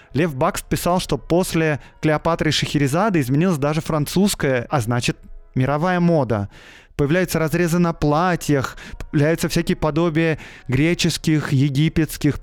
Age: 20-39